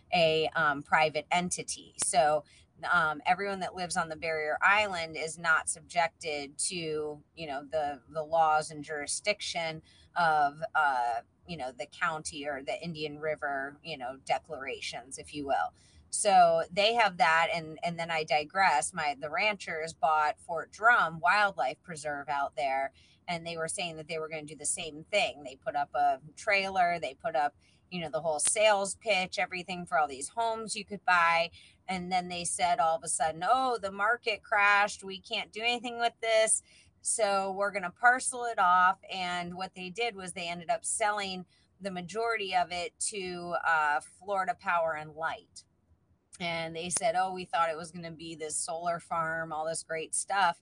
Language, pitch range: English, 155-200 Hz